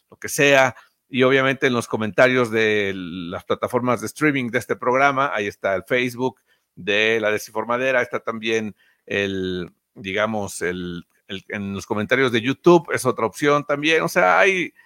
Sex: male